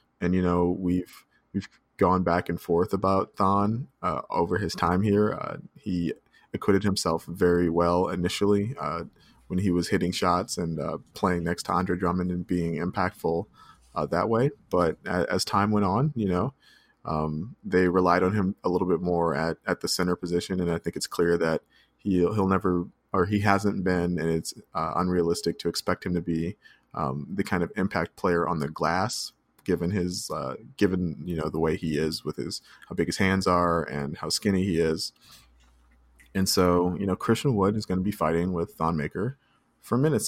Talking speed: 200 wpm